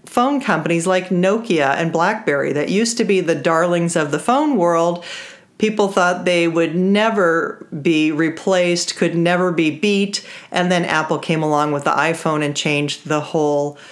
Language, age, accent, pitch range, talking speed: English, 40-59, American, 160-210 Hz, 170 wpm